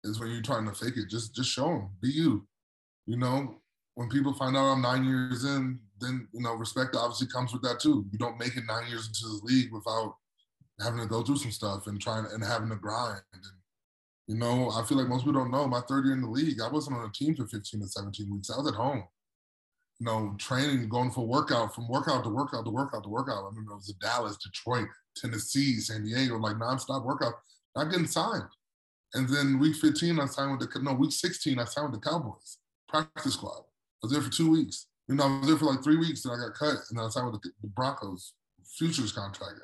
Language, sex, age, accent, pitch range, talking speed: English, male, 20-39, American, 110-135 Hz, 245 wpm